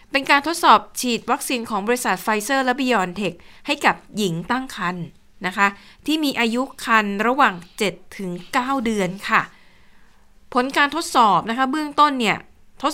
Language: Thai